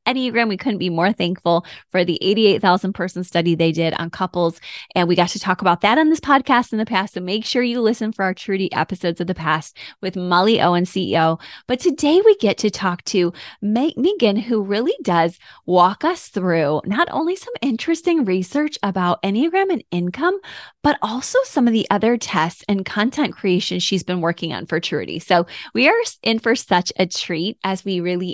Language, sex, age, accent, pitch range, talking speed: English, female, 20-39, American, 175-225 Hz, 200 wpm